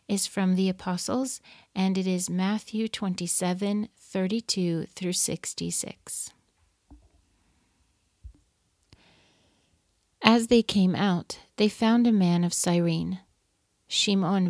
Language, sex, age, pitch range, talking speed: English, female, 40-59, 170-200 Hz, 95 wpm